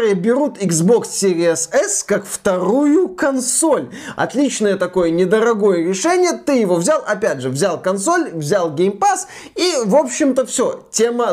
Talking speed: 140 wpm